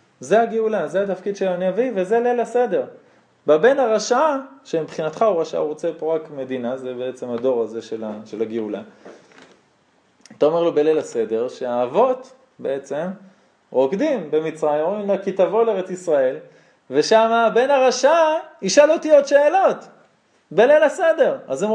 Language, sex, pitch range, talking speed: Hebrew, male, 180-250 Hz, 140 wpm